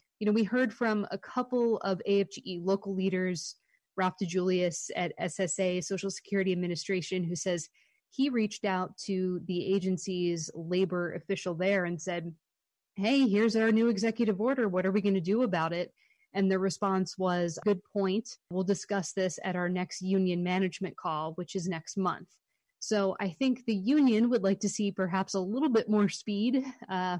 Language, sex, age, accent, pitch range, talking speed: English, female, 20-39, American, 180-225 Hz, 175 wpm